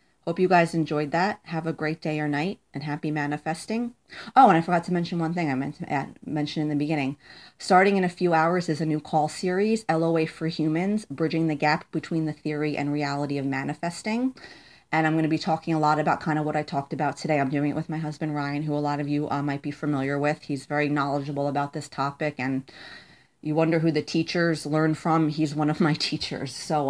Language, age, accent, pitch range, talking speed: English, 30-49, American, 145-165 Hz, 235 wpm